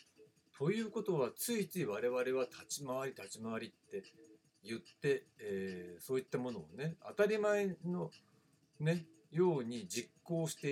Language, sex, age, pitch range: Japanese, male, 60-79, 130-200 Hz